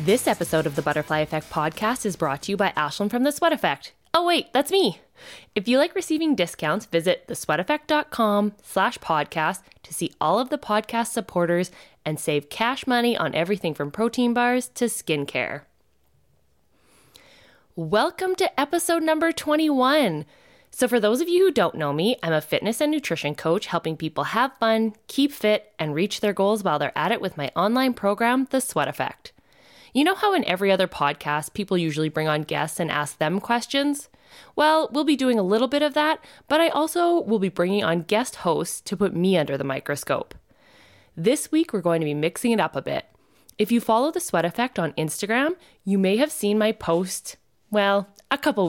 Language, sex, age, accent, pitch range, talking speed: English, female, 10-29, American, 165-275 Hz, 190 wpm